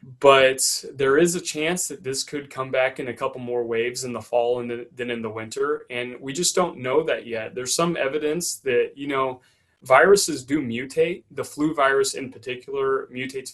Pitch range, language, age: 120-140 Hz, English, 20-39